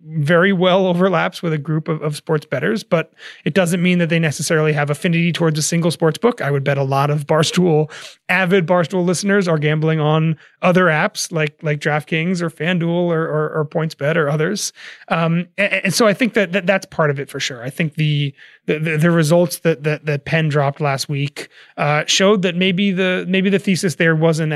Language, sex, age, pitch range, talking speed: English, male, 30-49, 155-185 Hz, 215 wpm